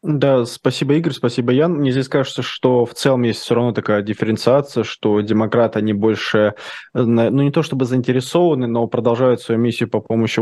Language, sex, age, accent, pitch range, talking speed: Russian, male, 20-39, native, 110-125 Hz, 180 wpm